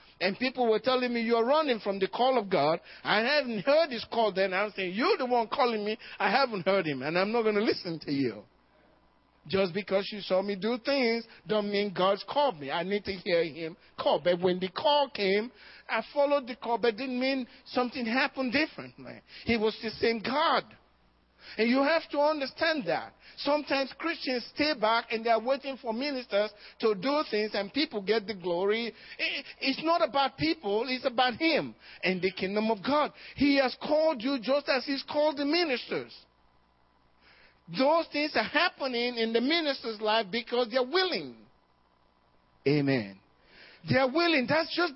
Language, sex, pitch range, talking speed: English, male, 205-280 Hz, 190 wpm